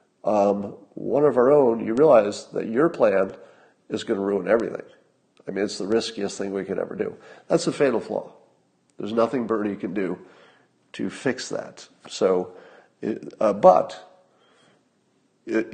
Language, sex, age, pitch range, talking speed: English, male, 50-69, 100-130 Hz, 155 wpm